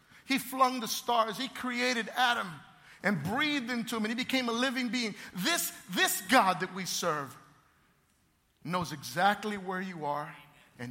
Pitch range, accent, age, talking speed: 165-245 Hz, American, 50-69, 160 wpm